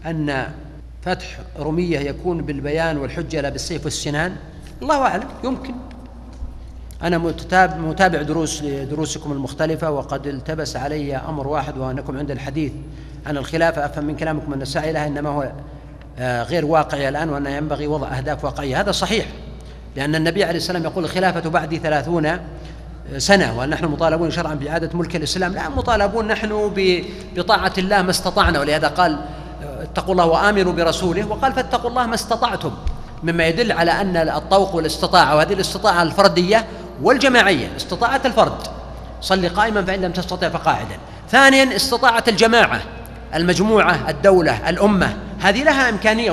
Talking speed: 135 wpm